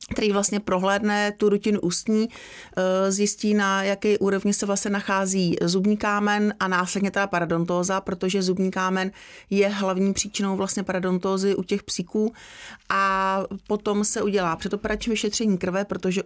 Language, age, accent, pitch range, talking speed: Czech, 30-49, native, 185-200 Hz, 140 wpm